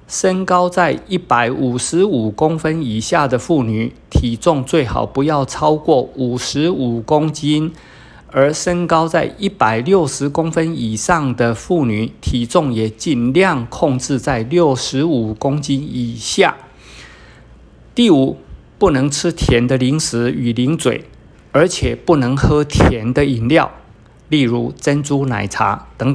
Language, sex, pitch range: Chinese, male, 120-160 Hz